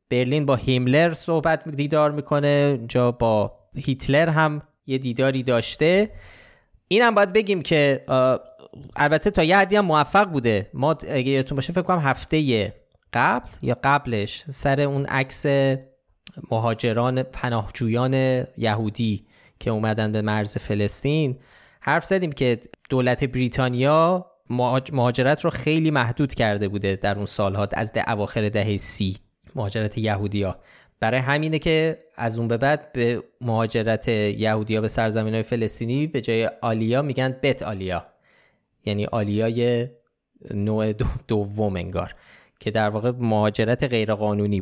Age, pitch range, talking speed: 20-39, 110-145 Hz, 135 wpm